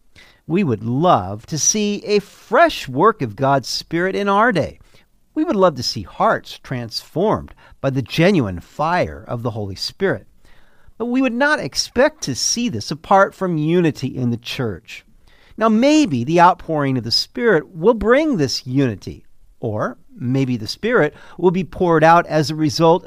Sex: male